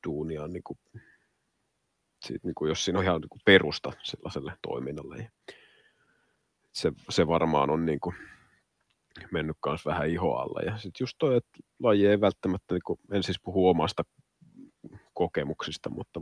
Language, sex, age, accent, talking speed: Finnish, male, 30-49, native, 150 wpm